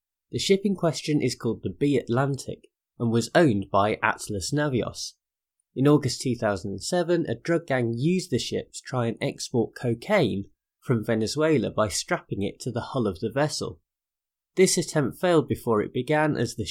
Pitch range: 105-145 Hz